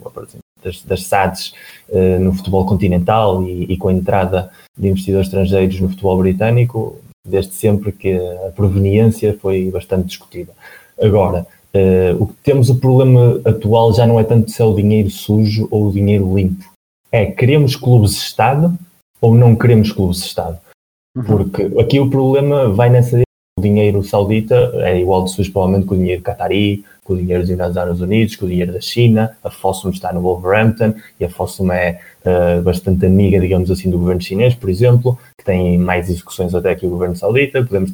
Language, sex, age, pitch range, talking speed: Portuguese, male, 20-39, 95-120 Hz, 180 wpm